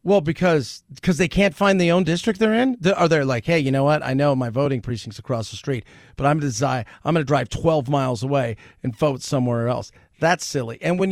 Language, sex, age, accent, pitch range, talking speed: English, male, 40-59, American, 135-190 Hz, 250 wpm